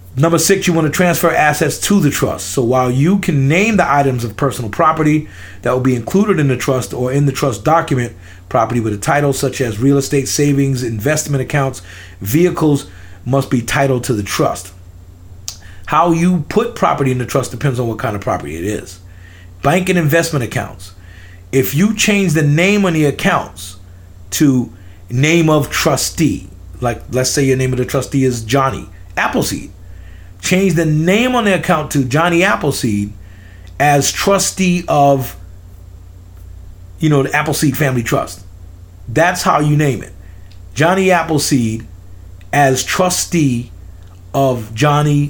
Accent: American